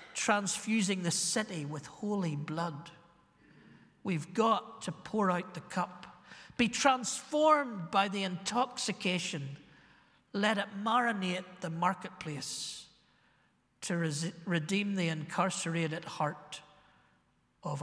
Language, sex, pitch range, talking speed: English, male, 150-195 Hz, 100 wpm